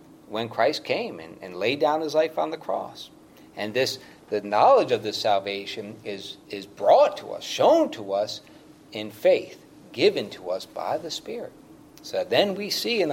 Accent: American